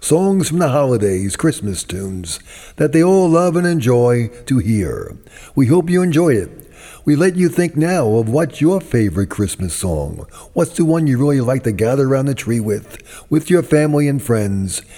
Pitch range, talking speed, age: 105-160 Hz, 190 wpm, 50-69